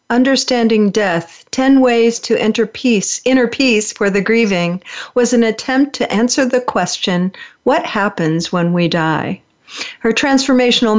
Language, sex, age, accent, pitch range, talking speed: English, female, 50-69, American, 185-235 Hz, 140 wpm